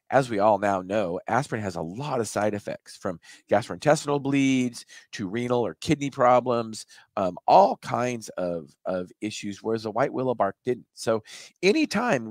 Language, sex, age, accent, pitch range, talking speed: English, male, 40-59, American, 95-130 Hz, 165 wpm